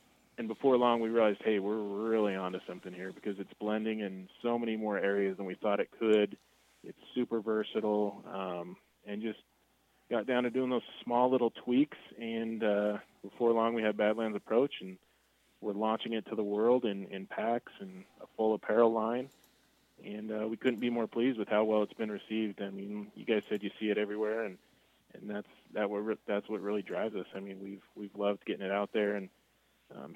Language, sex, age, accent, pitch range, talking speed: English, male, 20-39, American, 100-110 Hz, 205 wpm